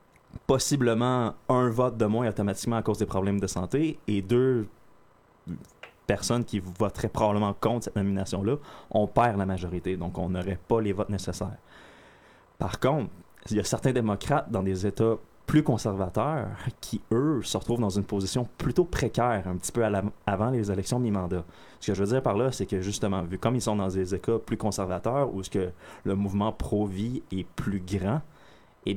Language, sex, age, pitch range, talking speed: French, male, 20-39, 95-115 Hz, 195 wpm